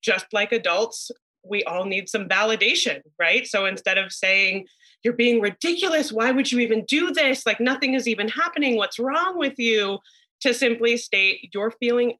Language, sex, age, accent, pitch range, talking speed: English, female, 30-49, American, 195-255 Hz, 175 wpm